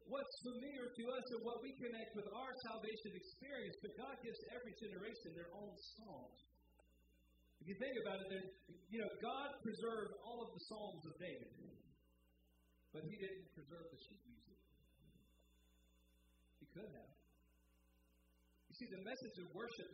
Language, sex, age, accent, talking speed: English, male, 50-69, American, 155 wpm